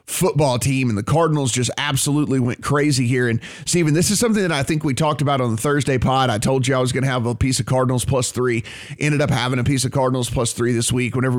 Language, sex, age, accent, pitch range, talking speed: English, male, 30-49, American, 130-165 Hz, 270 wpm